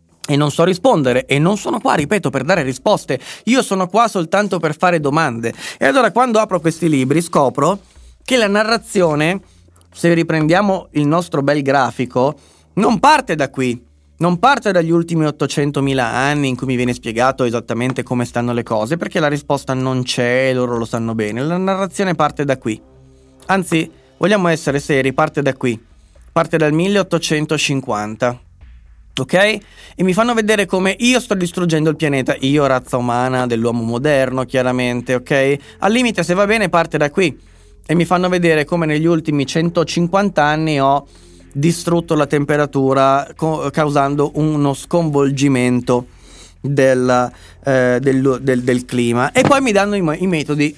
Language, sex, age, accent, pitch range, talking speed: Italian, male, 30-49, native, 125-170 Hz, 160 wpm